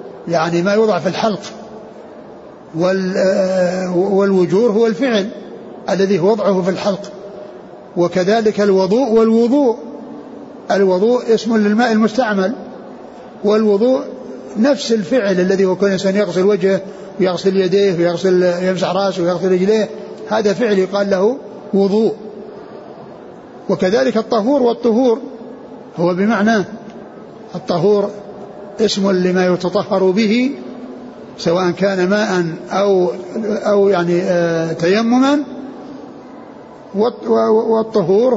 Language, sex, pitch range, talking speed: Arabic, male, 185-225 Hz, 90 wpm